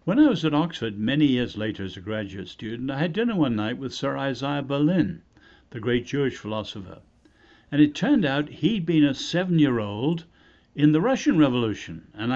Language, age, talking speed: English, 60-79, 185 wpm